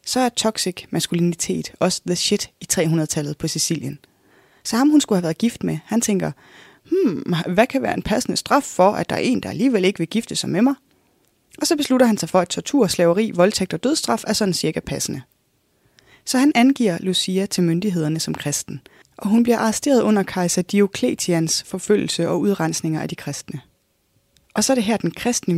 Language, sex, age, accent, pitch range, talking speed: Danish, female, 20-39, native, 165-220 Hz, 200 wpm